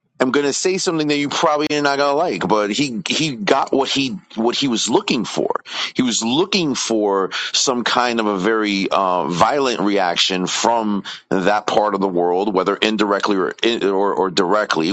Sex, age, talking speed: male, 30-49, 195 wpm